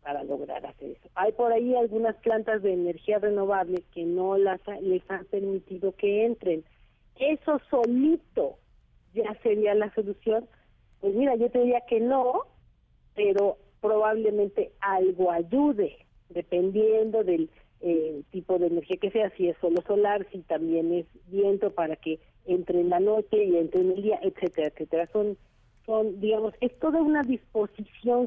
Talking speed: 155 wpm